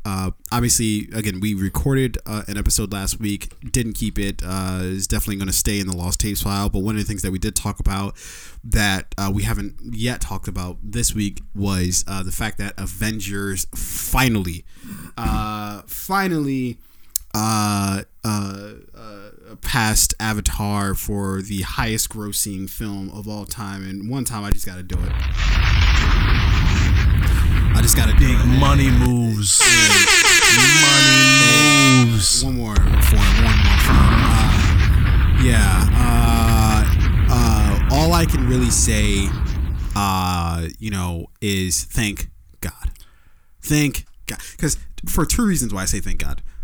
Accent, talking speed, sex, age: American, 145 wpm, male, 20-39